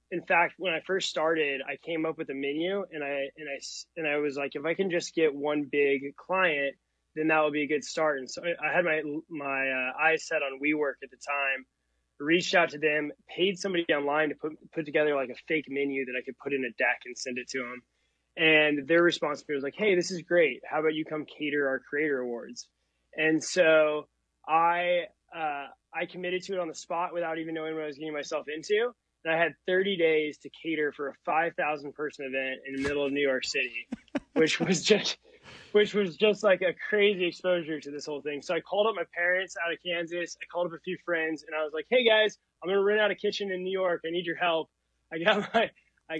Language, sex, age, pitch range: English, male, 20-39, 145-175 Hz